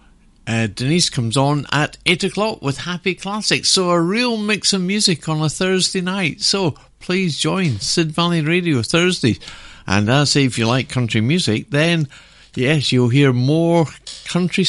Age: 60-79